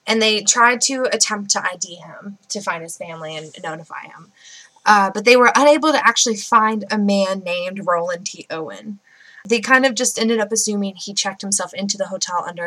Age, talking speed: 20-39, 205 wpm